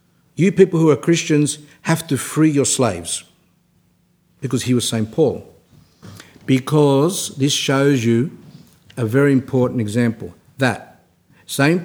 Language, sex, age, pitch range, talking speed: English, male, 60-79, 130-160 Hz, 125 wpm